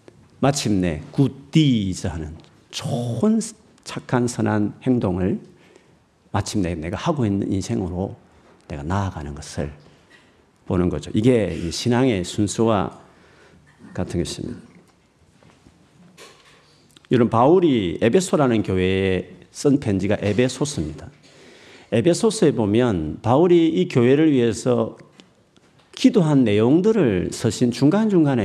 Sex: male